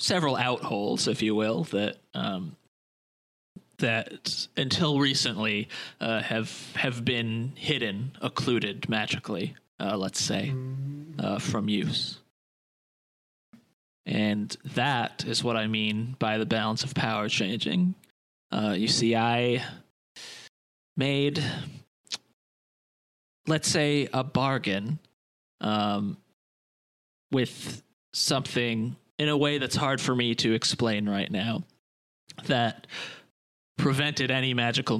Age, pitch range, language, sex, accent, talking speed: 20-39, 105-135 Hz, English, male, American, 105 wpm